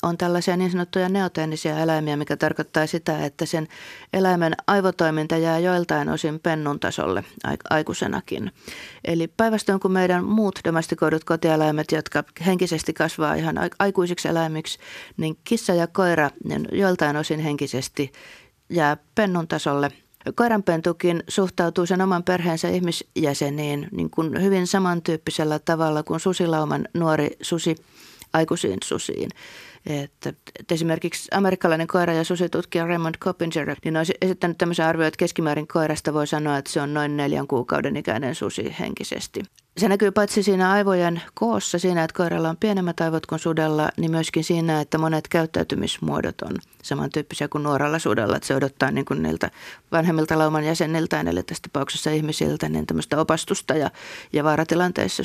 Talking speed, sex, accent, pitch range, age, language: 140 wpm, female, native, 155-180 Hz, 30-49, Finnish